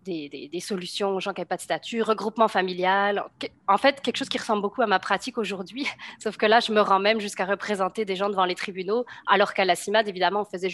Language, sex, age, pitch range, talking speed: French, female, 30-49, 185-220 Hz, 250 wpm